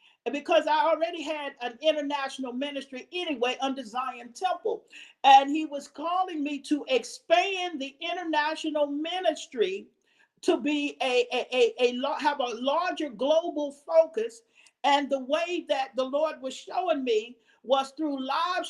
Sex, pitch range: male, 270-335 Hz